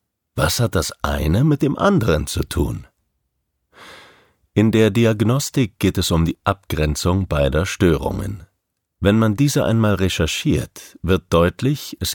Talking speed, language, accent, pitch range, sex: 135 wpm, German, German, 80-105 Hz, male